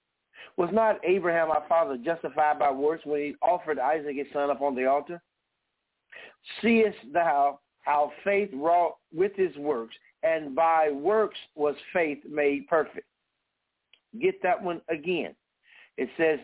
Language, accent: English, American